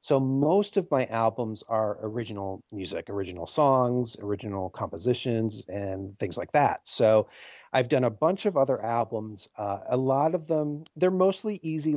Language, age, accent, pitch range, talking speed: English, 40-59, American, 110-140 Hz, 160 wpm